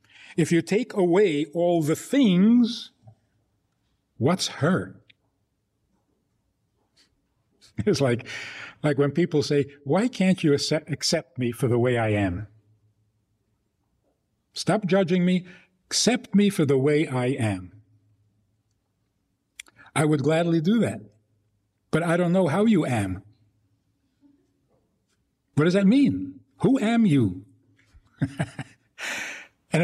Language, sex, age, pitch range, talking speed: English, male, 60-79, 105-180 Hz, 115 wpm